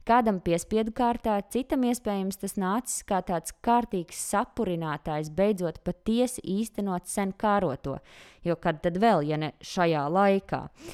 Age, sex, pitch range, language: 20-39, female, 170-215 Hz, English